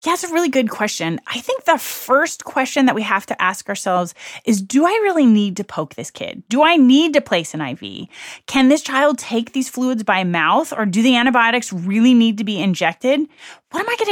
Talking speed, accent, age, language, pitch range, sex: 230 wpm, American, 30-49, English, 185-255 Hz, female